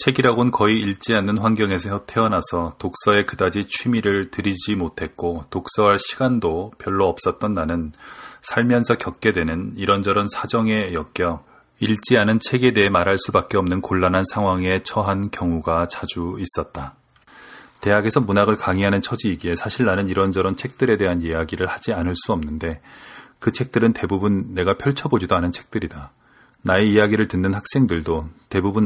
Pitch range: 90-110 Hz